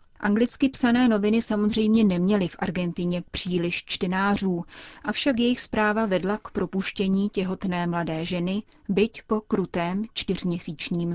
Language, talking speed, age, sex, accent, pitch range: Czech, 120 wpm, 30-49, female, native, 180-215 Hz